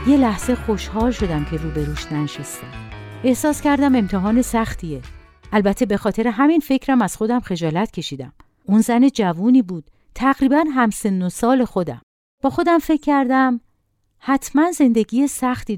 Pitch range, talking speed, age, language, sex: 175-265 Hz, 135 wpm, 50-69, Persian, female